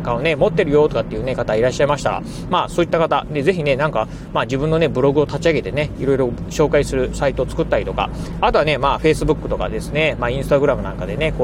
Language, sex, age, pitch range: Japanese, male, 30-49, 145-185 Hz